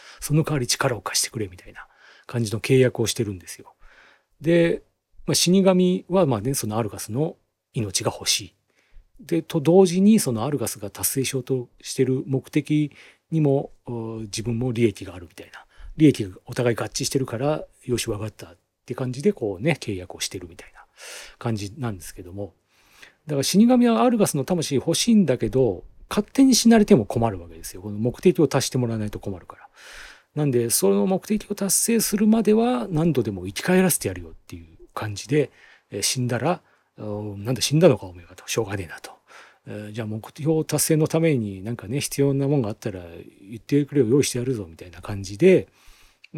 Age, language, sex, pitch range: 40-59, Japanese, male, 105-160 Hz